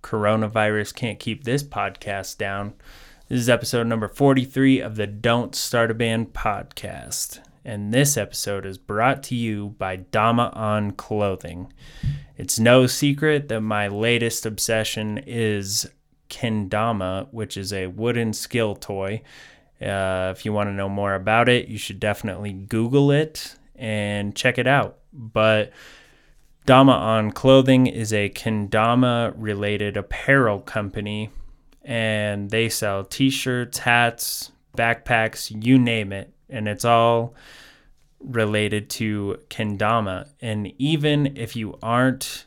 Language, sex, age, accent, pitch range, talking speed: English, male, 20-39, American, 105-120 Hz, 130 wpm